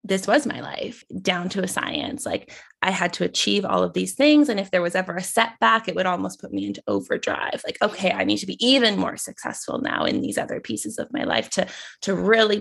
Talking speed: 245 wpm